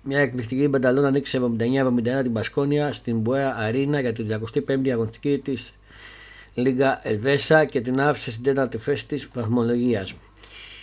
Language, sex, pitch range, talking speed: Greek, male, 115-140 Hz, 145 wpm